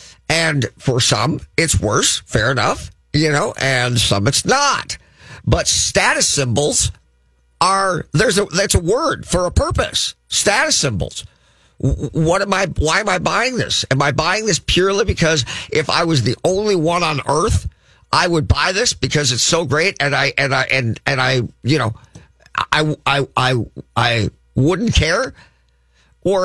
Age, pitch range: 50-69, 105-155 Hz